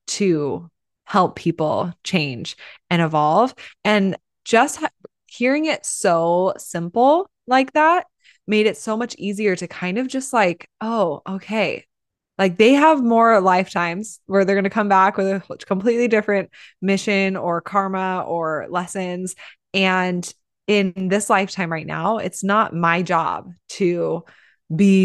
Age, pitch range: 20-39, 170-205 Hz